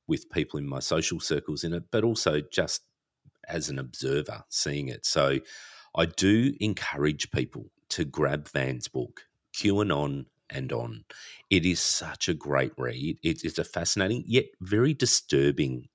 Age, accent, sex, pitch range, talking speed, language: 40-59, Australian, male, 70-105 Hz, 155 wpm, English